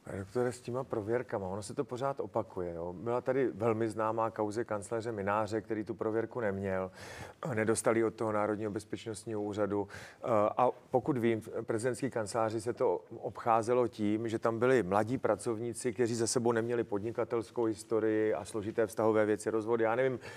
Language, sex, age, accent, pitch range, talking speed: Czech, male, 40-59, native, 110-125 Hz, 165 wpm